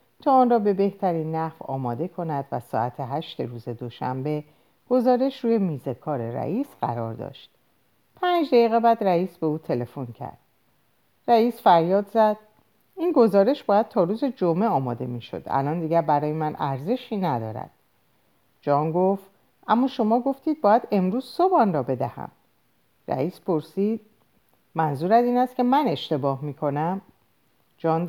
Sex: female